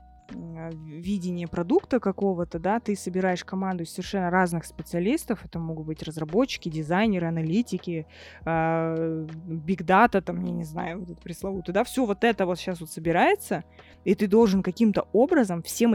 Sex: female